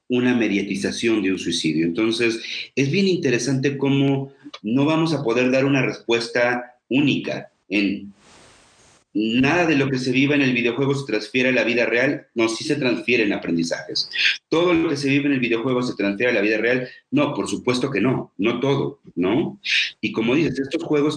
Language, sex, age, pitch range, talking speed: Spanish, male, 40-59, 105-130 Hz, 190 wpm